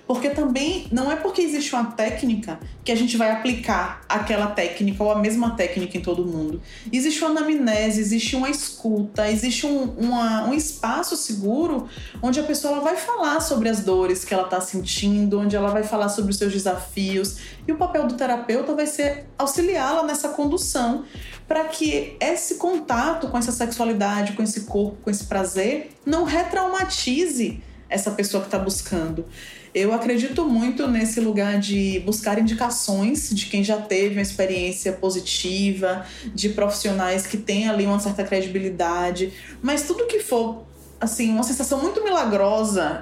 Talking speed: 165 wpm